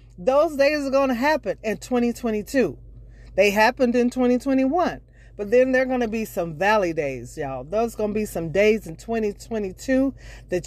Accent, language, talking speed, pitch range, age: American, English, 165 wpm, 175-245 Hz, 40-59